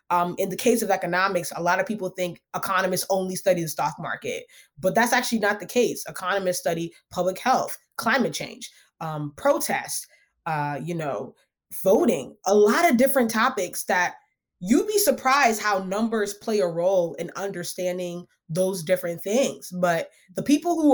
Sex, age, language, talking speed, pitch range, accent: female, 20-39, English, 165 wpm, 175-235 Hz, American